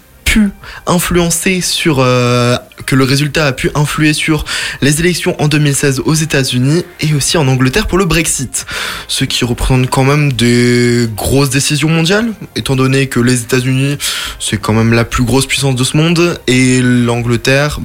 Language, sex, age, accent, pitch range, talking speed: French, male, 20-39, French, 130-175 Hz, 165 wpm